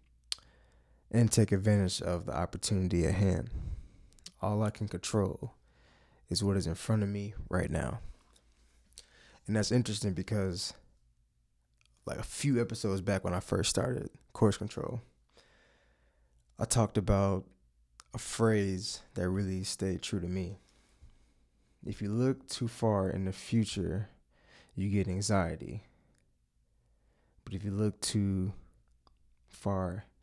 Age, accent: 20-39, American